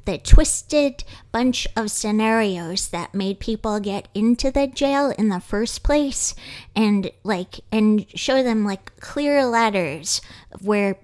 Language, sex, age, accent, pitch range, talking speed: English, female, 20-39, American, 190-245 Hz, 135 wpm